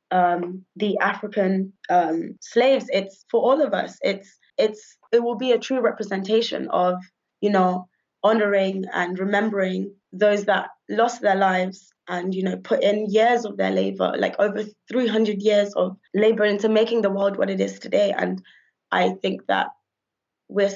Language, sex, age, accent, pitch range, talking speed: English, female, 20-39, British, 190-215 Hz, 165 wpm